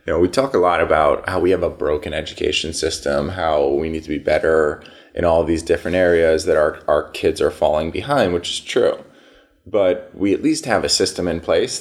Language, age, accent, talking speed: English, 20-39, American, 225 wpm